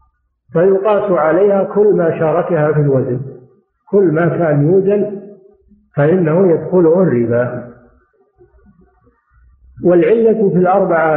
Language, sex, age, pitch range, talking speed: Arabic, male, 50-69, 130-190 Hz, 90 wpm